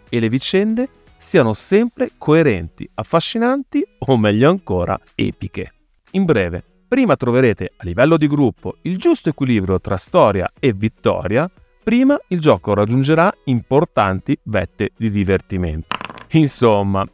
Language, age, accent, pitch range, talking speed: Italian, 30-49, native, 110-155 Hz, 125 wpm